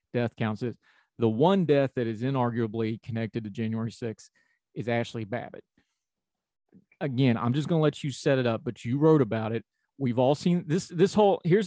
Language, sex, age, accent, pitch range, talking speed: English, male, 30-49, American, 115-140 Hz, 195 wpm